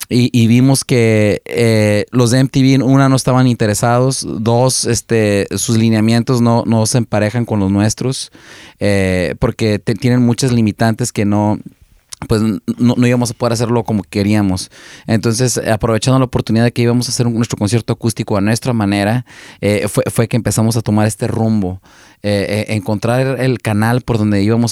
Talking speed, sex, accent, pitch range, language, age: 175 wpm, male, Mexican, 105-120 Hz, Spanish, 30-49